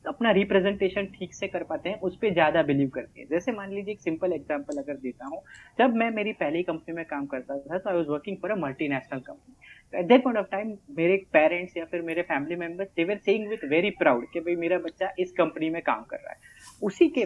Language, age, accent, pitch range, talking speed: Hindi, 30-49, native, 170-225 Hz, 235 wpm